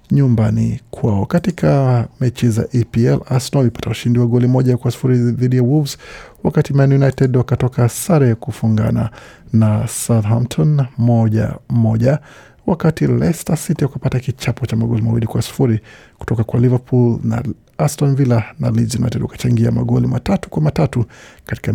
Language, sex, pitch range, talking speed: Swahili, male, 115-135 Hz, 140 wpm